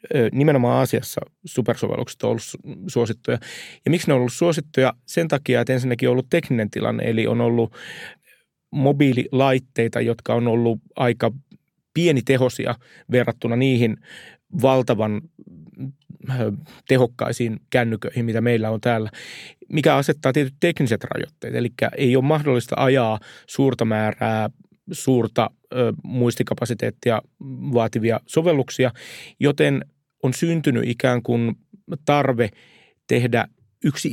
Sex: male